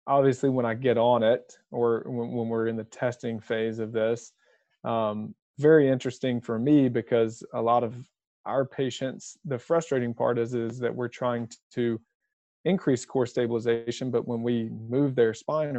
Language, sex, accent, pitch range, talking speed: English, male, American, 115-130 Hz, 165 wpm